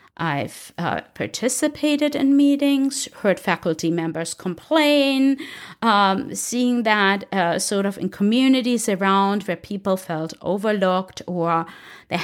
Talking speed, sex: 120 wpm, female